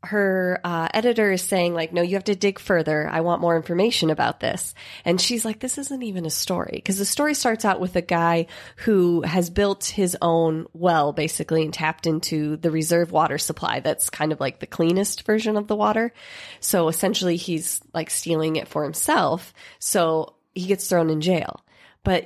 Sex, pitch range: female, 165-200 Hz